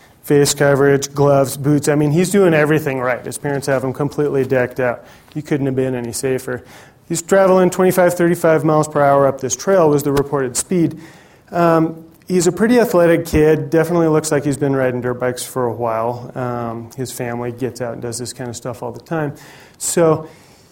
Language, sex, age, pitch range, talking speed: English, male, 30-49, 125-155 Hz, 200 wpm